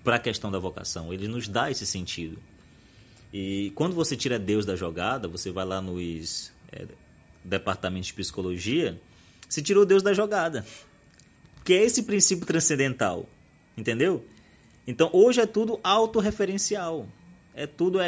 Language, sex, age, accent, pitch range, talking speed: Portuguese, male, 20-39, Brazilian, 105-150 Hz, 145 wpm